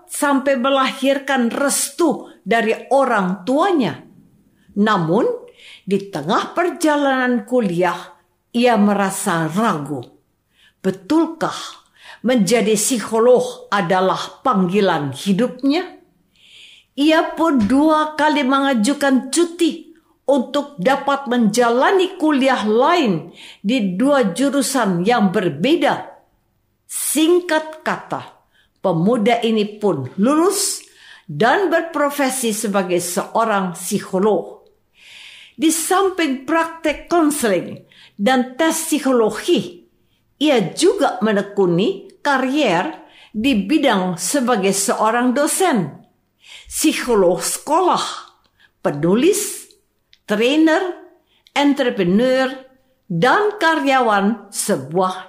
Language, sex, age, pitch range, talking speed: Indonesian, female, 50-69, 205-310 Hz, 75 wpm